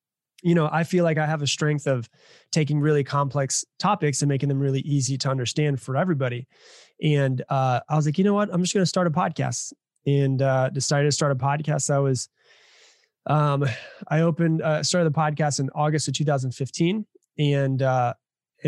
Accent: American